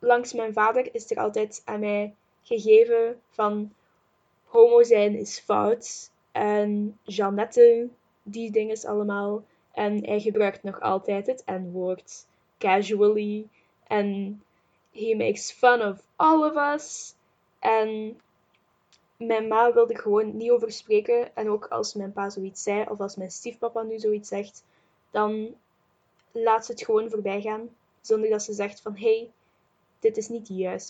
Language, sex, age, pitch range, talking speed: Dutch, female, 10-29, 210-245 Hz, 150 wpm